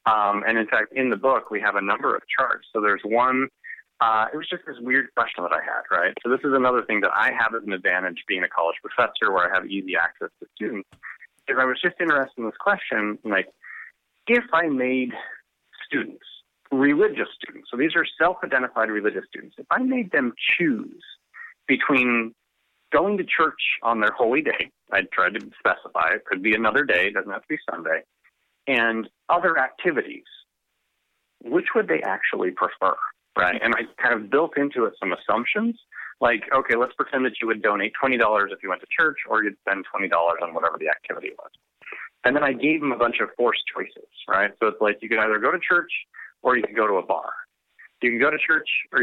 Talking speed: 210 wpm